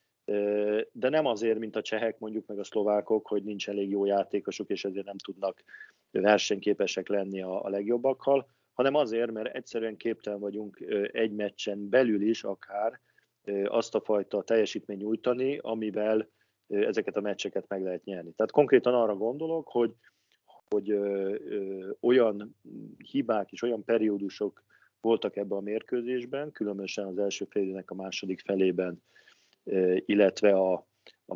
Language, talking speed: Hungarian, 140 wpm